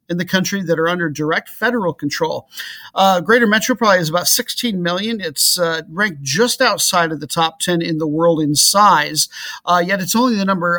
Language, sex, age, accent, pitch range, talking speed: English, male, 50-69, American, 160-195 Hz, 205 wpm